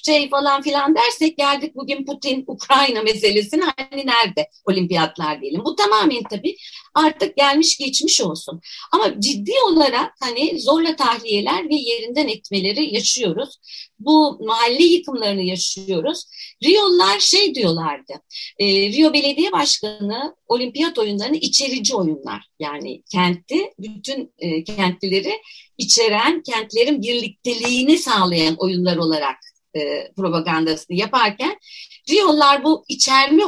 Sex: female